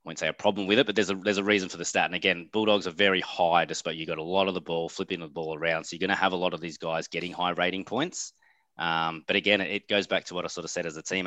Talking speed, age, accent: 325 wpm, 20-39, Australian